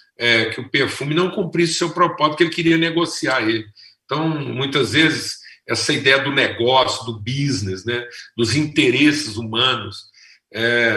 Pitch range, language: 115-165 Hz, Portuguese